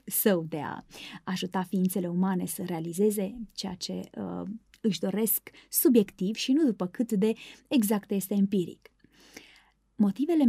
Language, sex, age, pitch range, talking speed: Romanian, female, 20-39, 195-240 Hz, 125 wpm